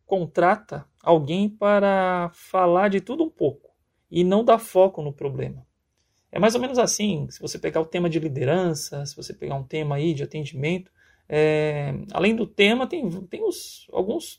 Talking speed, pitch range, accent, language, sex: 165 wpm, 155-210 Hz, Brazilian, Portuguese, male